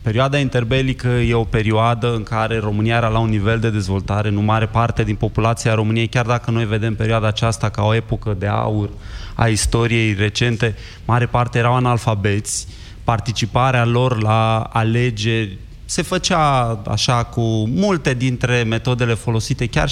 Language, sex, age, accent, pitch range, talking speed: Romanian, male, 20-39, native, 110-130 Hz, 155 wpm